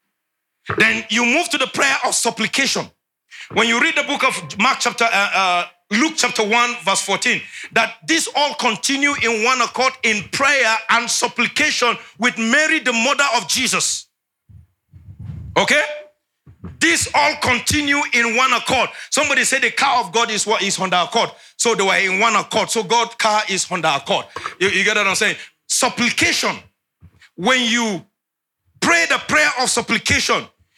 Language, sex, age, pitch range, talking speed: English, male, 50-69, 220-280 Hz, 165 wpm